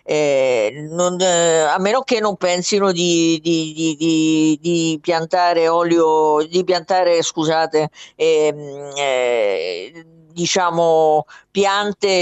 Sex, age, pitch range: female, 50-69, 155-200 Hz